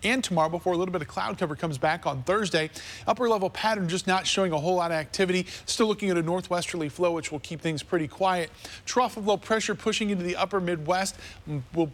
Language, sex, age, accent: English, male, 40-59, American